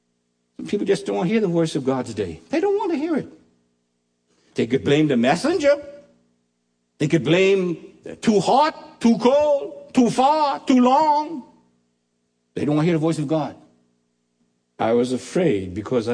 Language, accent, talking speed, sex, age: English, American, 165 wpm, male, 60-79